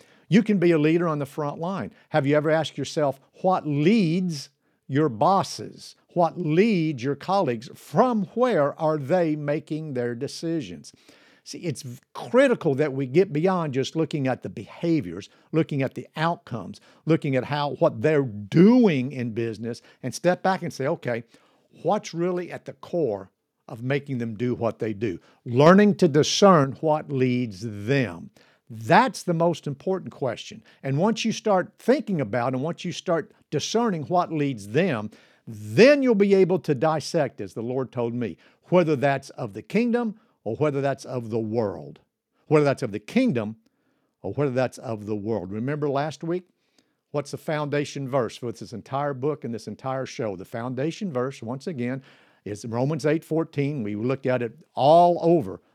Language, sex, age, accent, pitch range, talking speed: English, male, 50-69, American, 125-175 Hz, 170 wpm